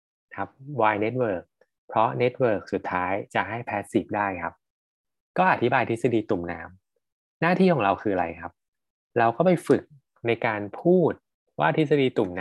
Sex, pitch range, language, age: male, 100-140 Hz, Thai, 20-39